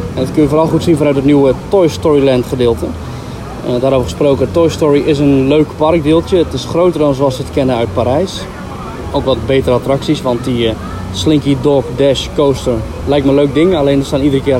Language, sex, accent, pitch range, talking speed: Dutch, male, Dutch, 130-160 Hz, 220 wpm